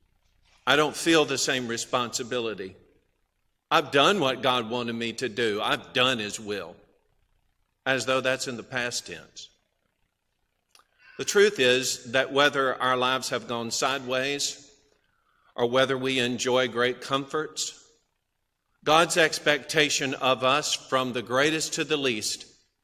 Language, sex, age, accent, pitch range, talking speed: English, male, 50-69, American, 125-155 Hz, 135 wpm